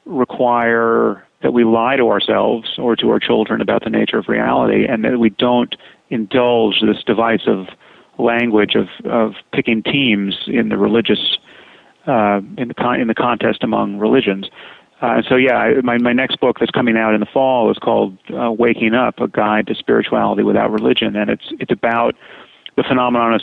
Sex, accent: male, American